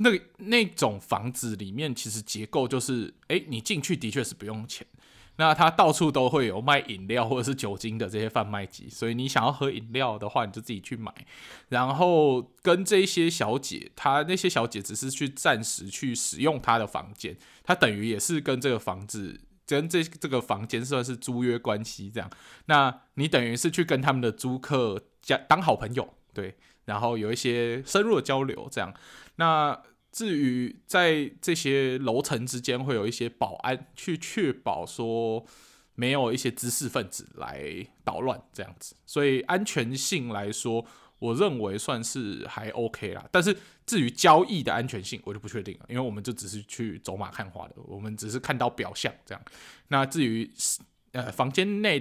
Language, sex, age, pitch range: Chinese, male, 20-39, 110-140 Hz